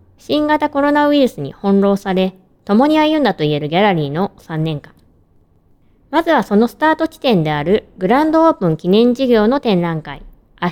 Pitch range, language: 170-270 Hz, Japanese